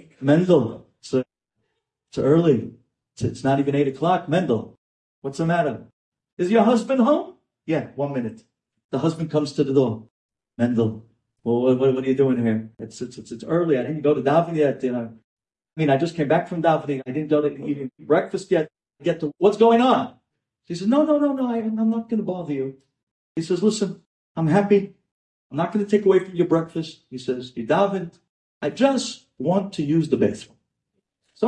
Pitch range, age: 130-215 Hz, 40-59